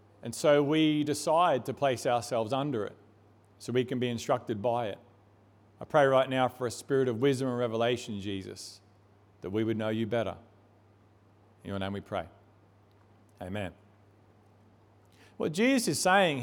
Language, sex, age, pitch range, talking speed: English, male, 40-59, 115-160 Hz, 160 wpm